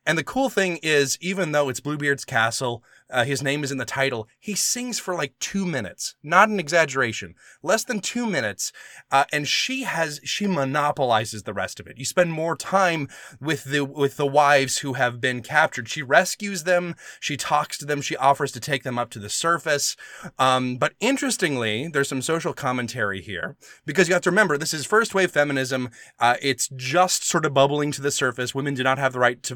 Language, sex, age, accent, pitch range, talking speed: English, male, 20-39, American, 125-155 Hz, 205 wpm